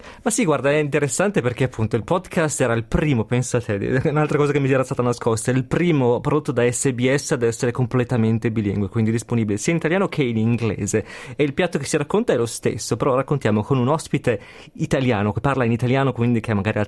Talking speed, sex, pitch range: 225 wpm, male, 120-150 Hz